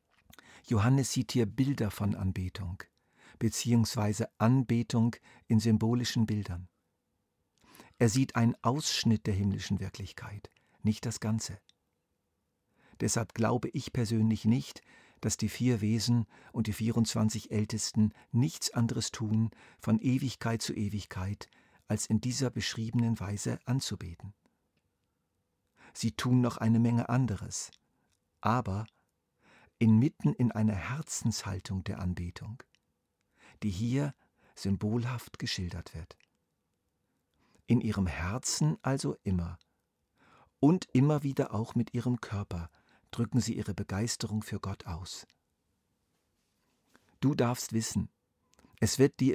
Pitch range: 100-120 Hz